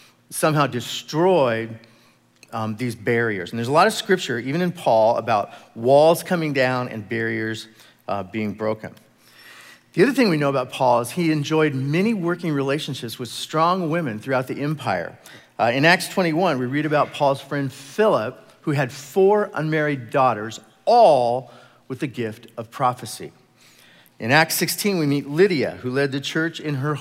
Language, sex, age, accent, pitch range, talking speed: English, male, 40-59, American, 120-160 Hz, 165 wpm